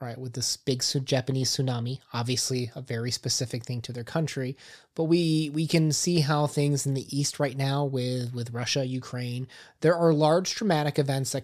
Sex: male